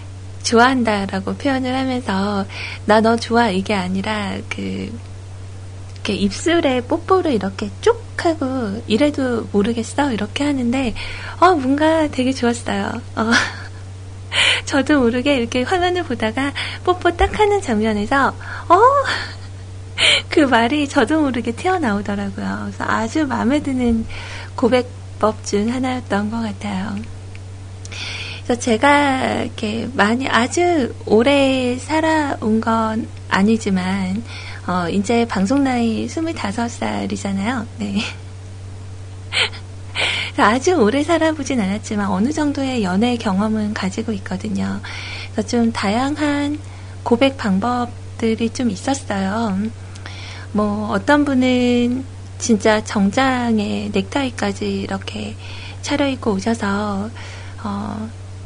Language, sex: Korean, female